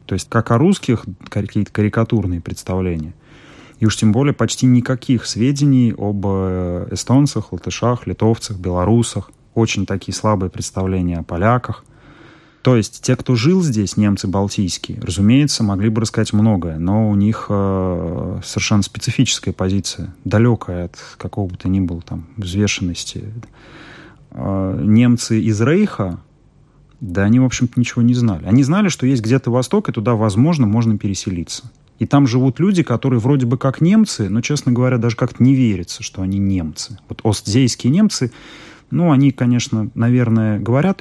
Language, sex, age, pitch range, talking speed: Russian, male, 30-49, 95-130 Hz, 150 wpm